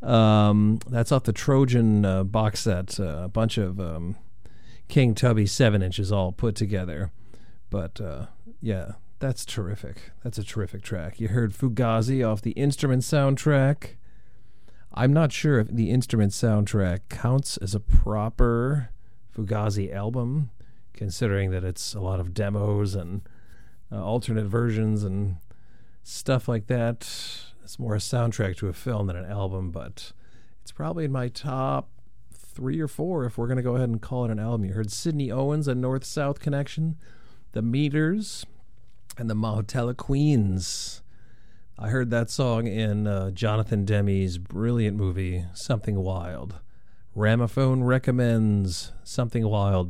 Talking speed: 150 wpm